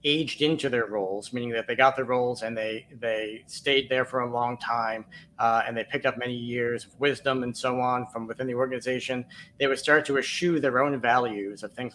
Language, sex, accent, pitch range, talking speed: English, male, American, 115-140 Hz, 225 wpm